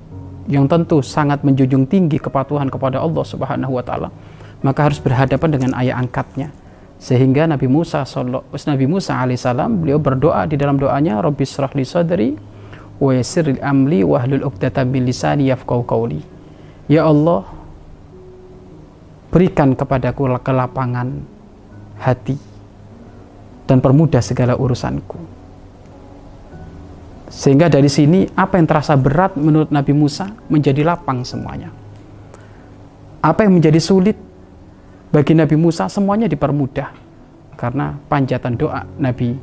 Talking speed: 100 wpm